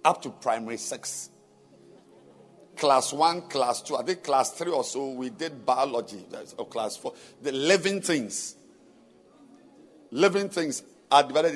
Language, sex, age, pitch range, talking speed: English, male, 50-69, 150-210 Hz, 140 wpm